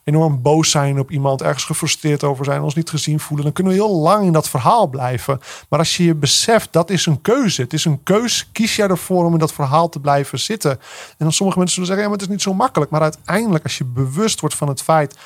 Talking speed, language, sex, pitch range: 265 wpm, Dutch, male, 125-160 Hz